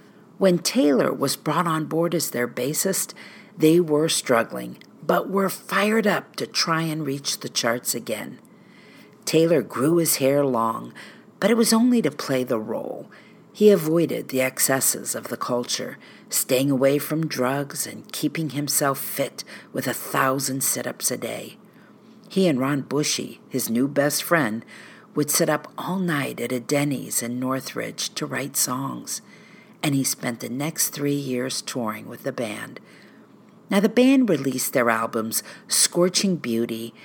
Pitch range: 130-195 Hz